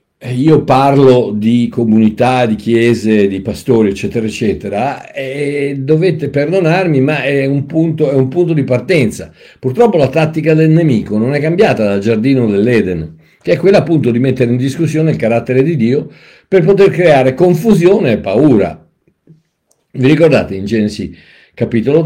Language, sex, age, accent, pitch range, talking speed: Italian, male, 50-69, native, 105-145 Hz, 150 wpm